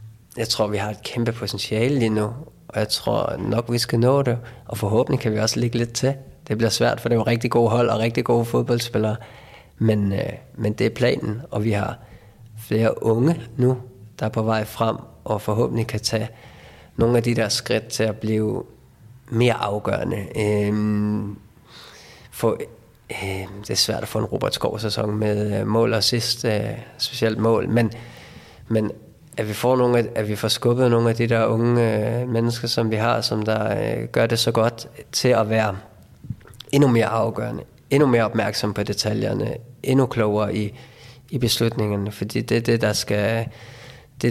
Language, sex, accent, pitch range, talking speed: Danish, male, native, 105-120 Hz, 180 wpm